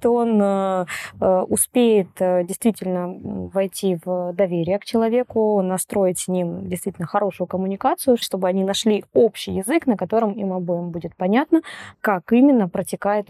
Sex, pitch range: female, 185-215 Hz